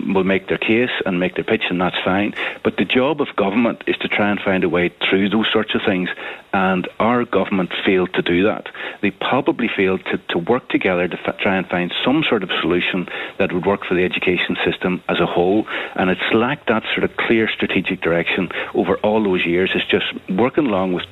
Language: English